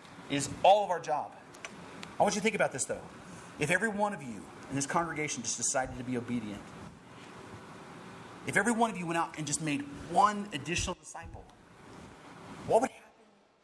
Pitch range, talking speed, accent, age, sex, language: 150-205 Hz, 185 wpm, American, 30-49, male, English